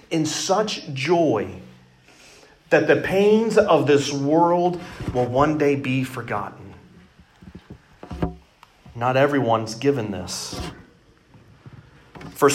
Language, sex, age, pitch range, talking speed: English, male, 40-59, 135-175 Hz, 90 wpm